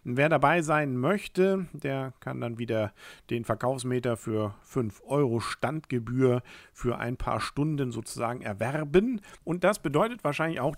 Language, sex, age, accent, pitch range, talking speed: German, male, 50-69, German, 115-160 Hz, 140 wpm